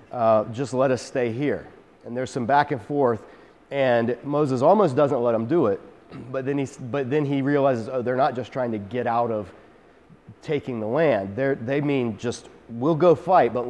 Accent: American